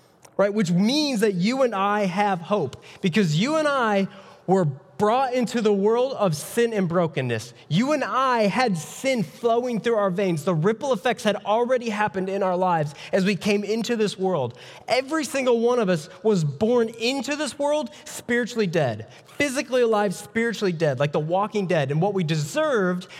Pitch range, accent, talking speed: 160-230 Hz, American, 180 wpm